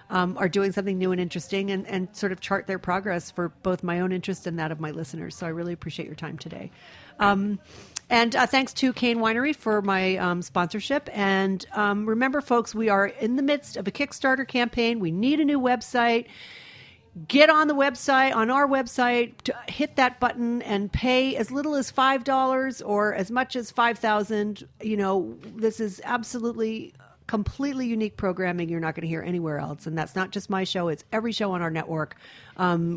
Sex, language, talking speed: female, English, 200 wpm